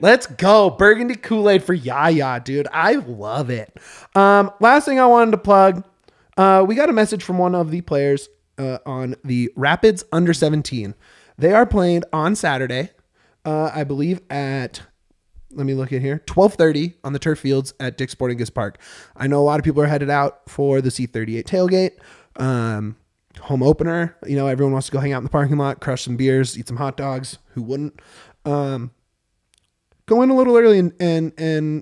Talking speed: 190 wpm